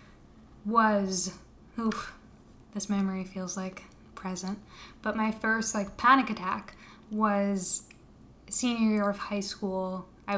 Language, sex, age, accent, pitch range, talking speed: English, female, 10-29, American, 195-220 Hz, 115 wpm